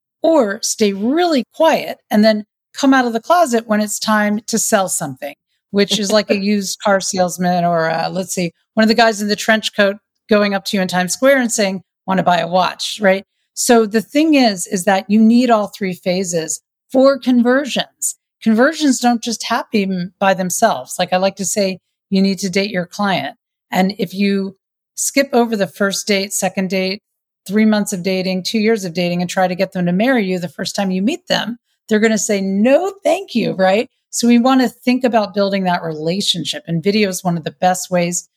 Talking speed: 215 wpm